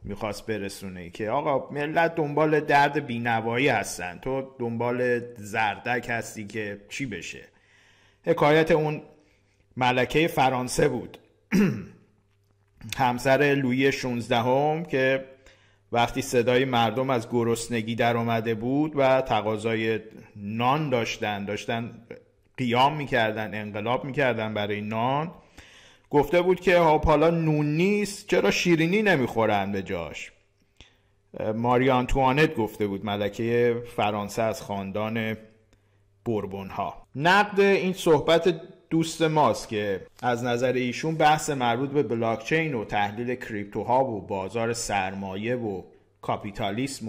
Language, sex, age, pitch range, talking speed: Persian, male, 50-69, 105-145 Hz, 110 wpm